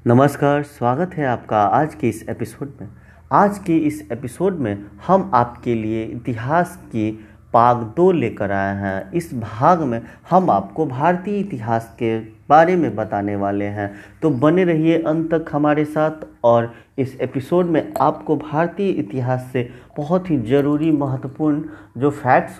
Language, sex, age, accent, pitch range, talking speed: Hindi, male, 50-69, native, 115-170 Hz, 155 wpm